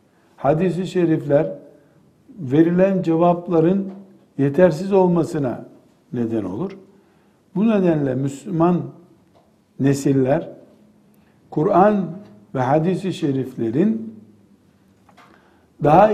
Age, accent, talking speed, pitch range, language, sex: 60-79, native, 65 wpm, 145-190 Hz, Turkish, male